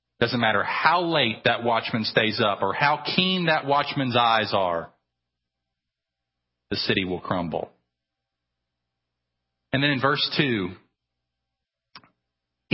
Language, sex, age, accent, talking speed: English, male, 40-59, American, 115 wpm